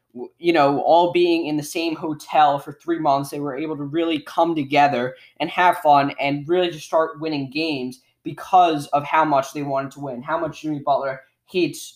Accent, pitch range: American, 135-170 Hz